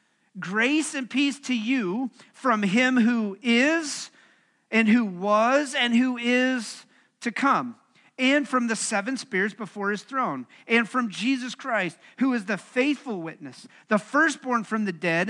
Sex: male